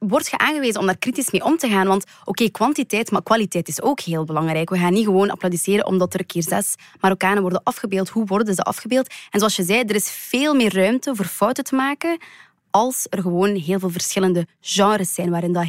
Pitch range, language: 190-225 Hz, Dutch